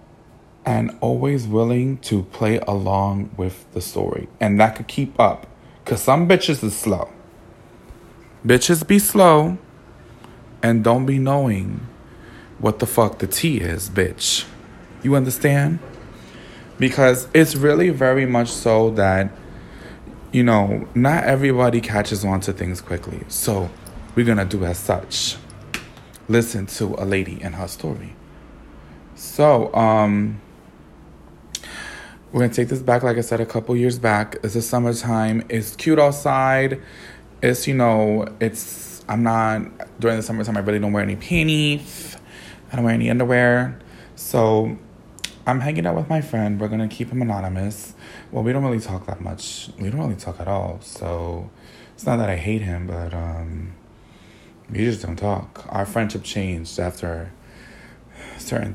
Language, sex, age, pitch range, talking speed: English, male, 20-39, 100-125 Hz, 155 wpm